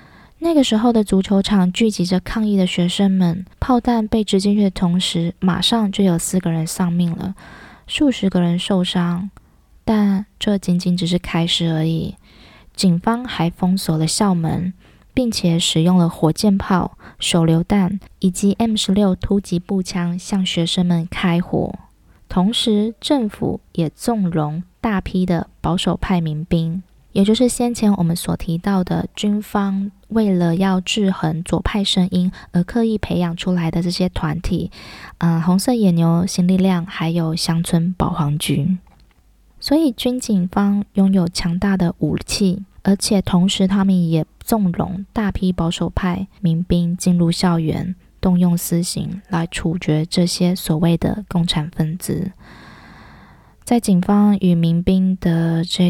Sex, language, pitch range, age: female, Chinese, 170-200 Hz, 20-39